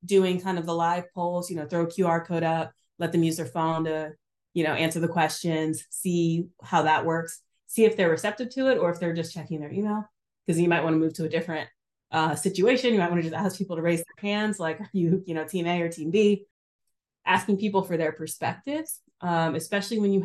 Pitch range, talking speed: 160-185 Hz, 240 wpm